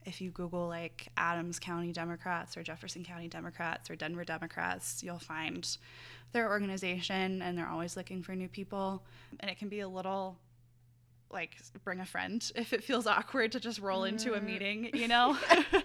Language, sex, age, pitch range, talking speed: English, female, 20-39, 165-195 Hz, 180 wpm